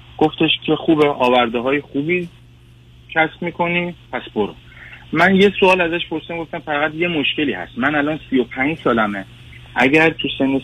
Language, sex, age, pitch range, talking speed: Persian, male, 30-49, 115-155 Hz, 150 wpm